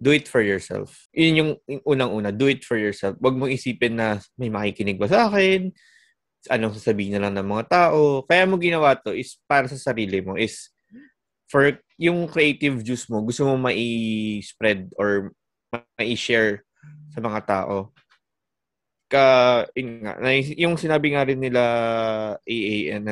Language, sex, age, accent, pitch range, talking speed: Filipino, male, 20-39, native, 110-145 Hz, 150 wpm